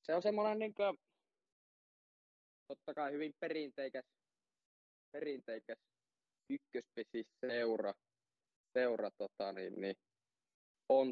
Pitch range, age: 115-135 Hz, 20-39